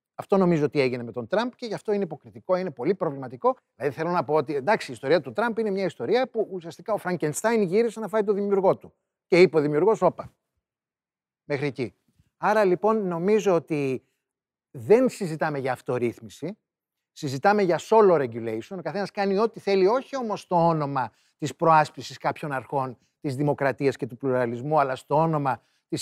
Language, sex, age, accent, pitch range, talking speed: Greek, male, 30-49, native, 145-200 Hz, 180 wpm